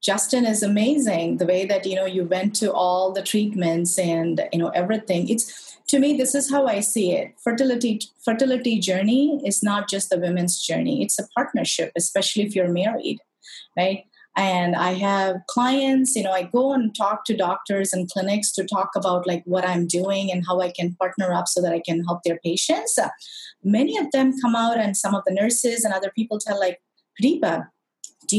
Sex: female